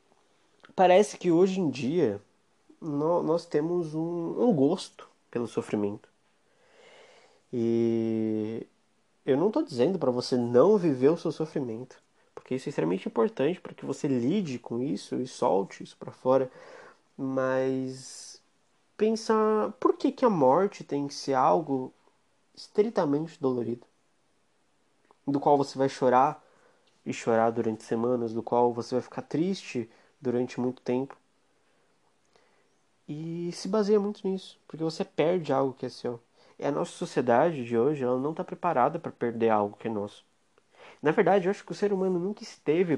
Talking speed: 150 wpm